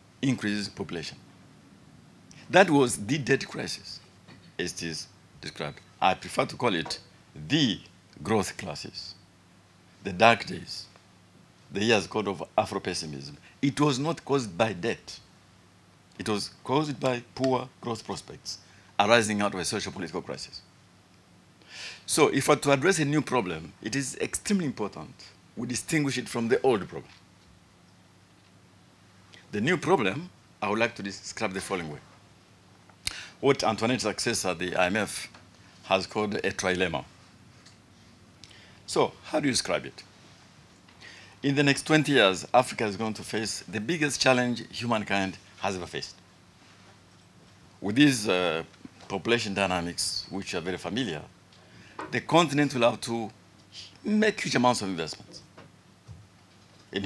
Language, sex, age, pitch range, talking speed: English, male, 60-79, 95-125 Hz, 135 wpm